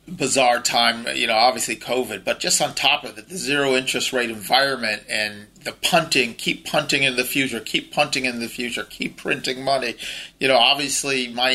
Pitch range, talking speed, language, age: 125-160 Hz, 190 wpm, English, 30-49